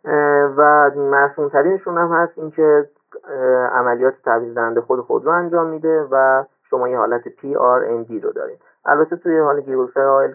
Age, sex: 40-59, male